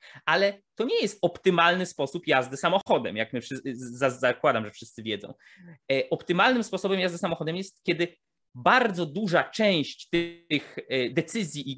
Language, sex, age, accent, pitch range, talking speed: Polish, male, 20-39, native, 135-185 Hz, 125 wpm